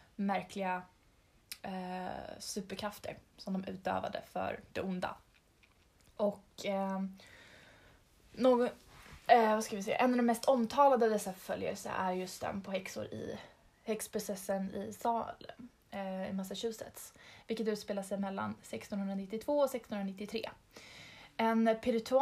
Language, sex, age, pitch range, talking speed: Swedish, female, 20-39, 195-230 Hz, 115 wpm